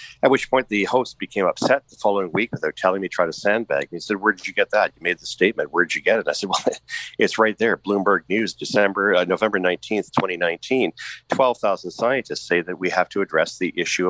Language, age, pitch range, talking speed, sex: English, 50-69, 80-110 Hz, 245 wpm, male